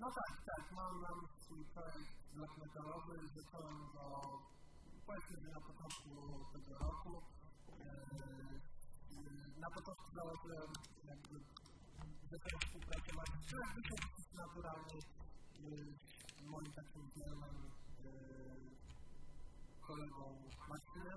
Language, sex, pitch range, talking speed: Polish, male, 145-170 Hz, 70 wpm